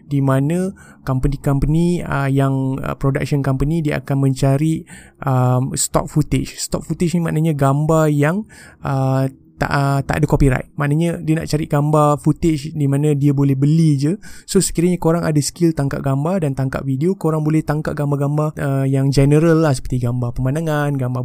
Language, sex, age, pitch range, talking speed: Malay, male, 20-39, 135-160 Hz, 160 wpm